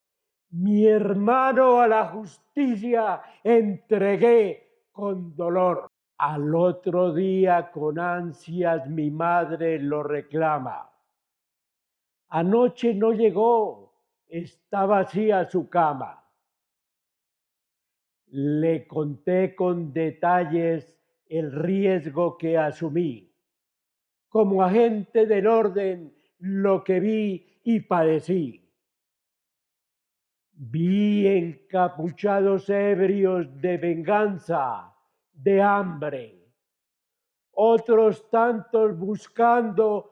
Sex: male